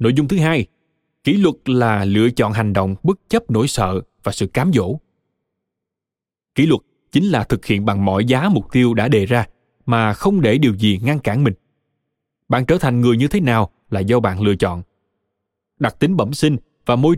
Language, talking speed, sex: Vietnamese, 205 wpm, male